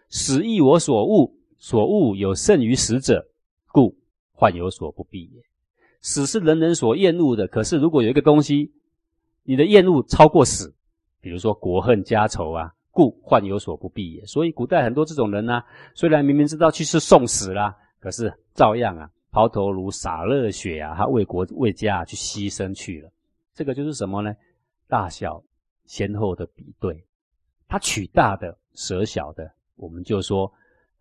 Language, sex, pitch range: Chinese, male, 95-125 Hz